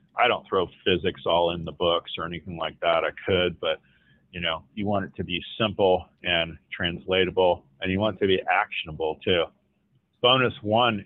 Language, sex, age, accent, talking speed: English, male, 40-59, American, 190 wpm